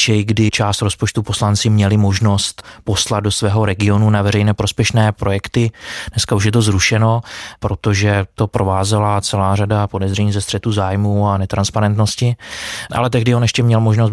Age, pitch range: 20-39, 100-110 Hz